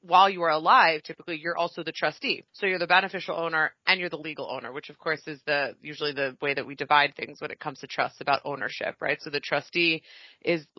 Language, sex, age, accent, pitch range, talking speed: English, female, 30-49, American, 150-170 Hz, 240 wpm